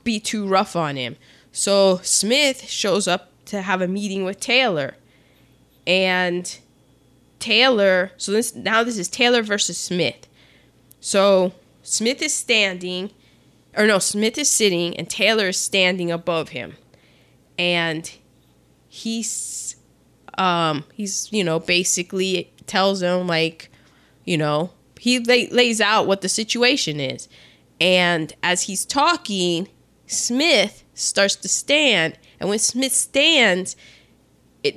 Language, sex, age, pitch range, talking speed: English, female, 20-39, 175-225 Hz, 125 wpm